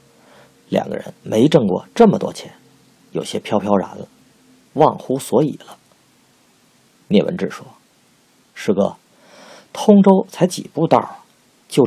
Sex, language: male, Chinese